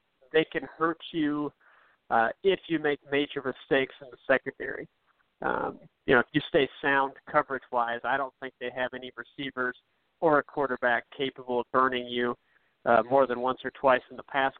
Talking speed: 180 wpm